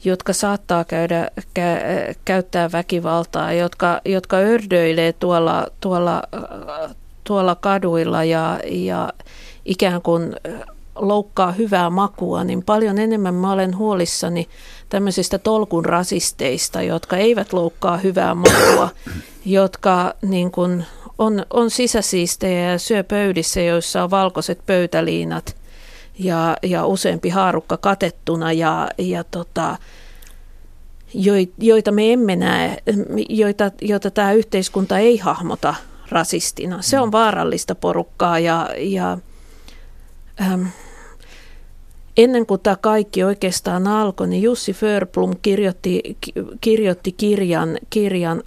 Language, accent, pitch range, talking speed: Finnish, native, 170-205 Hz, 100 wpm